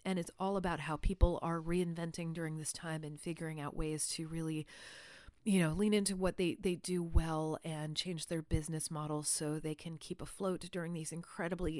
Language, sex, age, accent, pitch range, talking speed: English, female, 30-49, American, 155-200 Hz, 200 wpm